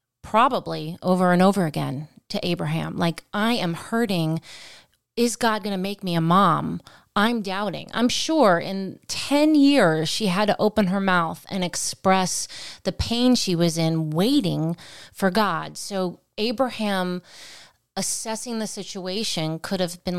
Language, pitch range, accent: English, 175-220 Hz, American